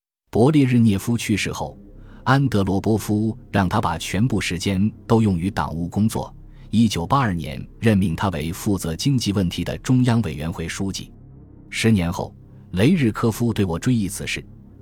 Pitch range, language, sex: 85-115 Hz, Chinese, male